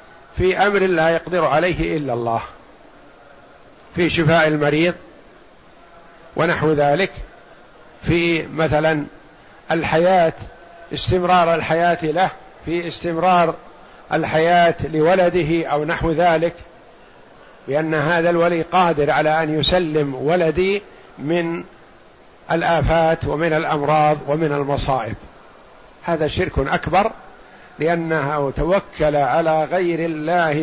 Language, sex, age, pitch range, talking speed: Arabic, male, 50-69, 150-180 Hz, 90 wpm